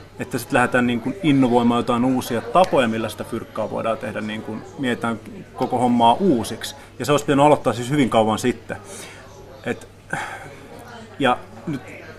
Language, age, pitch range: Finnish, 30-49, 110-135 Hz